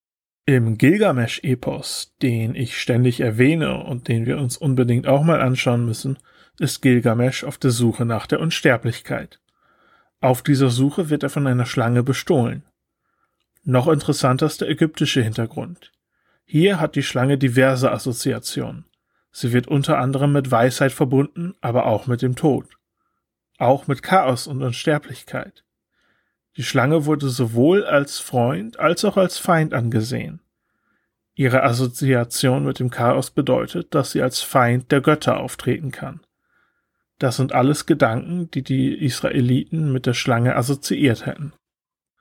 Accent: German